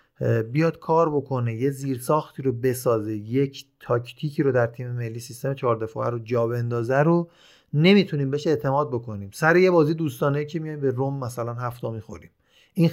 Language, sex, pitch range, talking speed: Persian, male, 120-160 Hz, 160 wpm